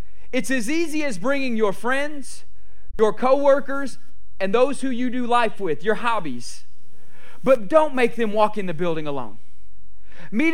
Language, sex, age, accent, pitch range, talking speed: English, male, 40-59, American, 180-275 Hz, 160 wpm